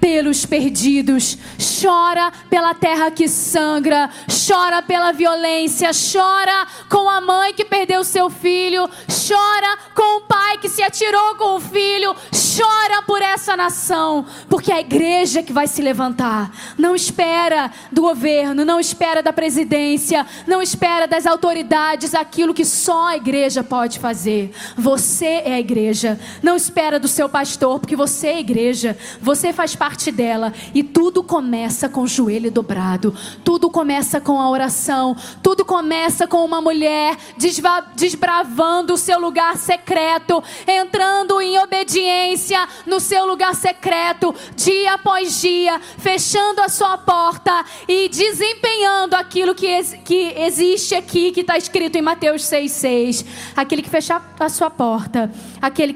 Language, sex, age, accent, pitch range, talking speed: Portuguese, female, 20-39, Brazilian, 260-360 Hz, 145 wpm